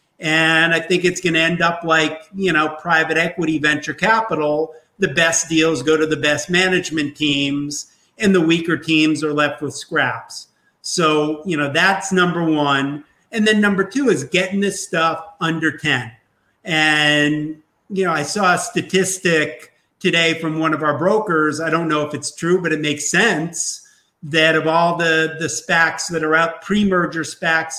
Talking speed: 175 wpm